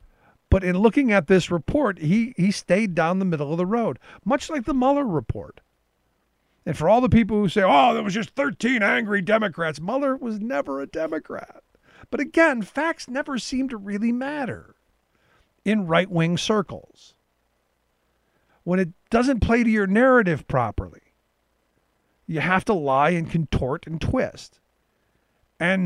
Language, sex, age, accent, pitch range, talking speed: English, male, 50-69, American, 165-235 Hz, 160 wpm